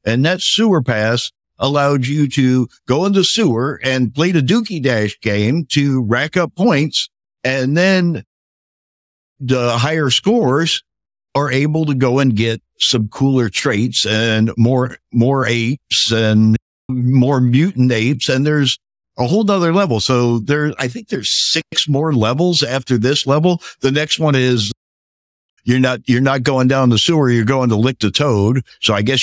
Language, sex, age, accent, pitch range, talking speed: English, male, 60-79, American, 100-135 Hz, 165 wpm